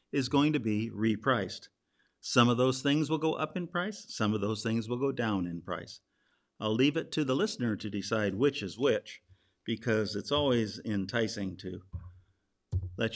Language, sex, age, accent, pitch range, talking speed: English, male, 50-69, American, 100-145 Hz, 180 wpm